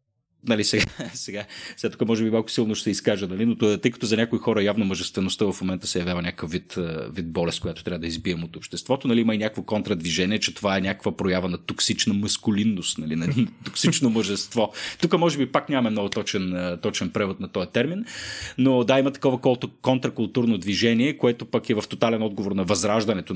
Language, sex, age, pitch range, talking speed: Bulgarian, male, 30-49, 95-125 Hz, 210 wpm